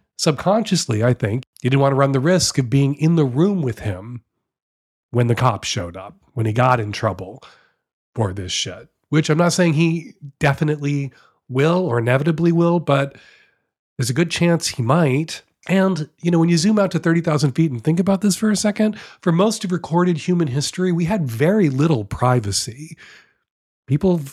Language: English